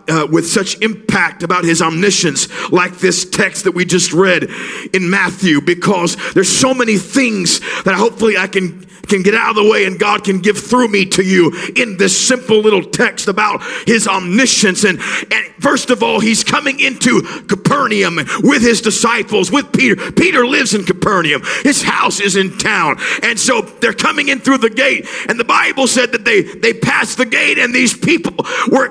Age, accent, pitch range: 50-69, American, 190-255 Hz